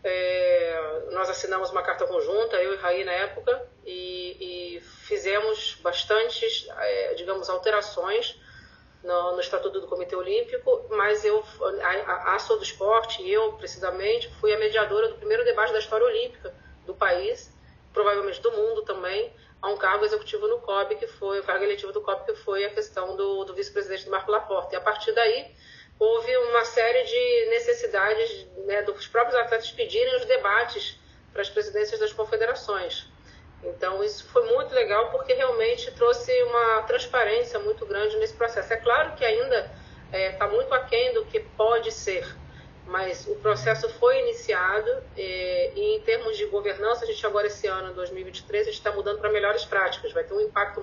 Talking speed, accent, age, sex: 170 wpm, Brazilian, 30-49, female